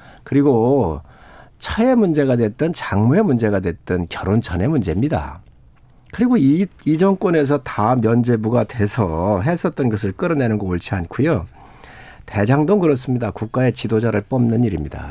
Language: Korean